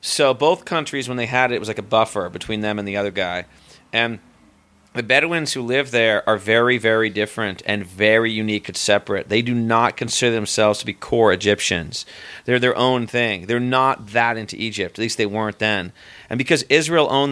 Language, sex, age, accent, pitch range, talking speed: English, male, 40-59, American, 105-130 Hz, 210 wpm